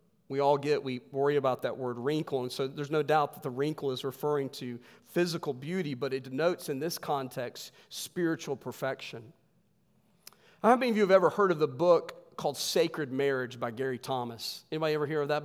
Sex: male